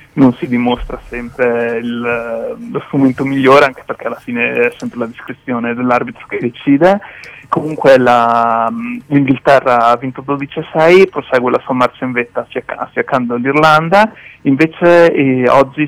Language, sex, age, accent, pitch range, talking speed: Italian, male, 30-49, native, 120-145 Hz, 140 wpm